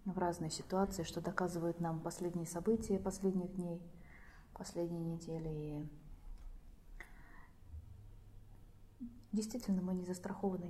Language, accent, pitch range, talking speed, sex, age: Russian, native, 170-200 Hz, 95 wpm, female, 30-49